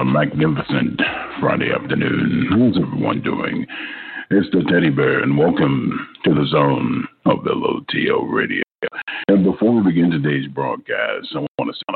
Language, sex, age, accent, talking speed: English, male, 50-69, American, 150 wpm